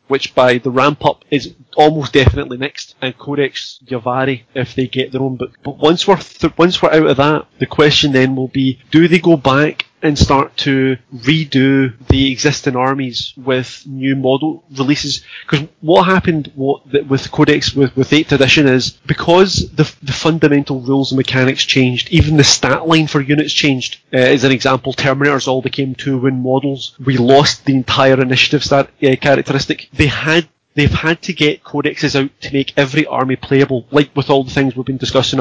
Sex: male